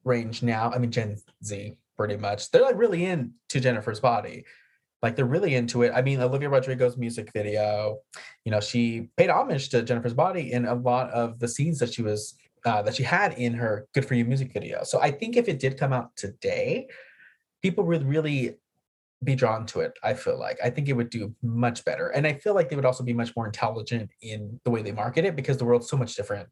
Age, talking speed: 20-39, 230 wpm